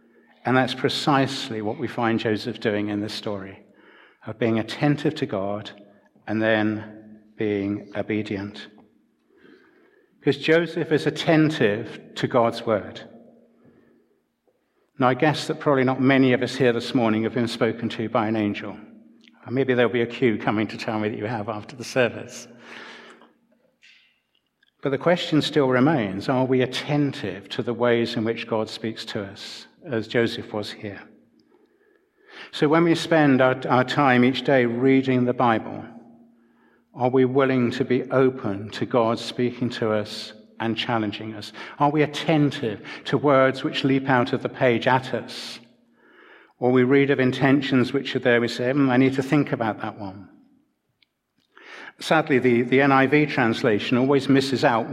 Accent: British